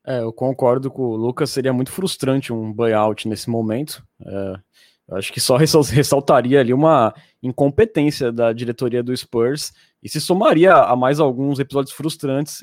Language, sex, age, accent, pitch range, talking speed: Portuguese, male, 20-39, Brazilian, 120-145 Hz, 160 wpm